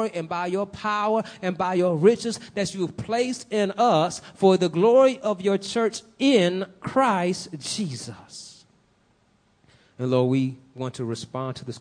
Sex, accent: male, American